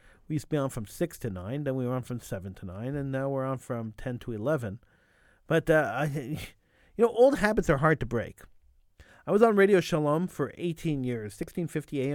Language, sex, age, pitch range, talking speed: English, male, 40-59, 115-175 Hz, 220 wpm